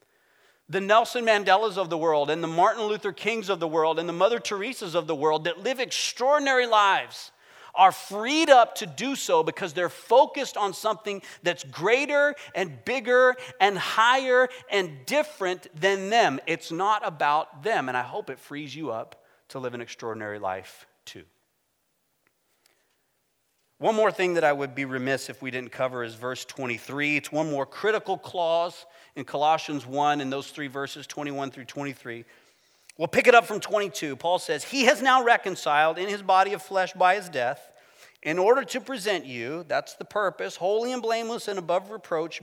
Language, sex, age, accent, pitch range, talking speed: English, male, 40-59, American, 145-210 Hz, 180 wpm